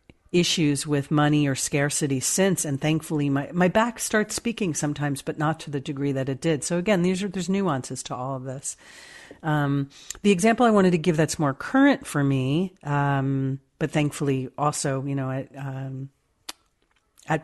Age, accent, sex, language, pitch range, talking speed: 40-59, American, female, English, 140-165 Hz, 180 wpm